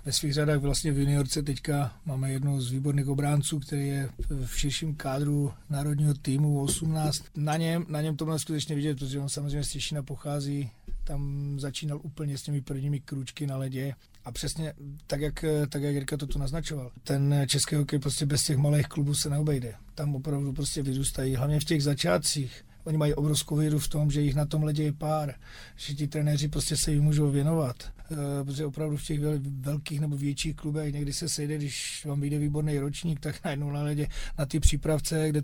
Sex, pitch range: male, 140-150 Hz